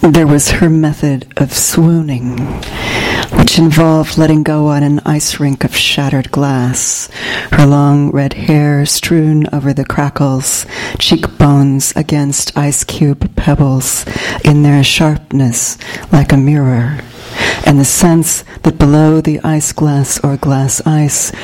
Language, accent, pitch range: English, American, 140-165 Hz